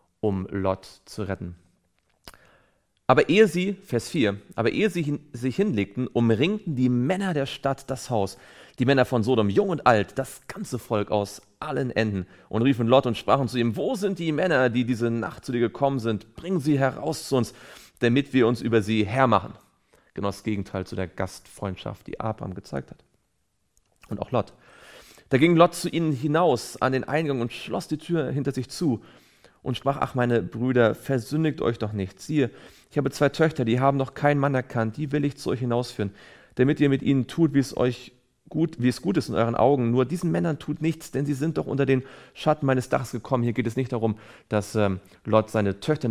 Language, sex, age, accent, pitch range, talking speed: German, male, 40-59, German, 110-145 Hz, 205 wpm